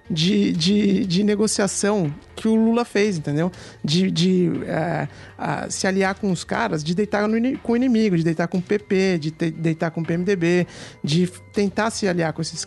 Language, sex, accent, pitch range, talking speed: Portuguese, male, Brazilian, 180-235 Hz, 170 wpm